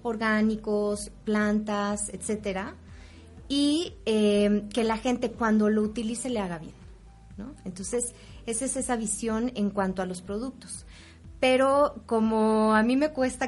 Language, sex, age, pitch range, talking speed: Spanish, female, 20-39, 205-250 Hz, 140 wpm